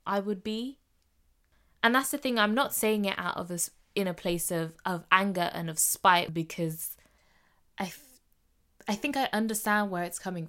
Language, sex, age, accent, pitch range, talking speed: English, female, 20-39, British, 155-190 Hz, 185 wpm